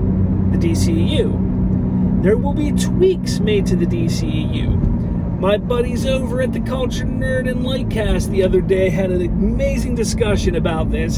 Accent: American